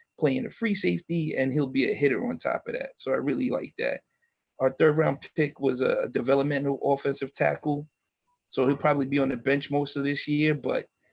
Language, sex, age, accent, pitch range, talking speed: English, male, 40-59, American, 130-155 Hz, 210 wpm